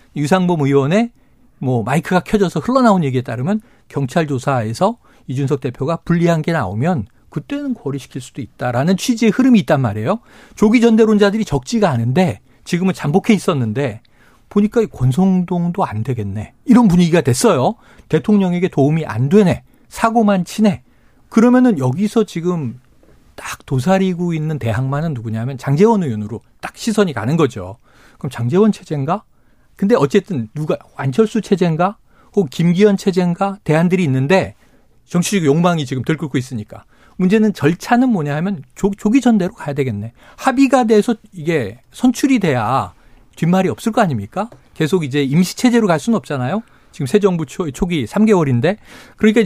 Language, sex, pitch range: Korean, male, 140-210 Hz